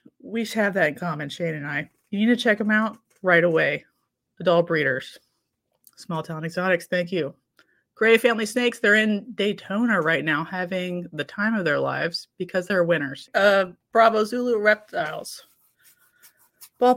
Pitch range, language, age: 175-230 Hz, English, 30-49